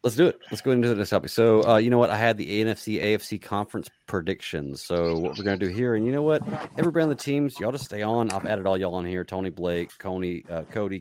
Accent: American